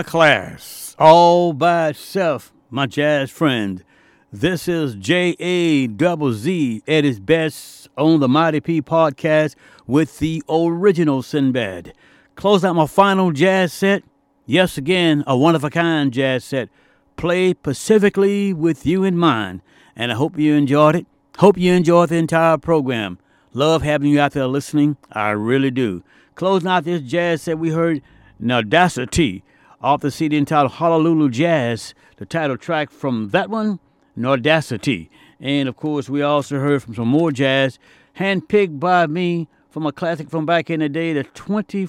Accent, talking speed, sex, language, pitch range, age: American, 160 wpm, male, English, 135-170 Hz, 60-79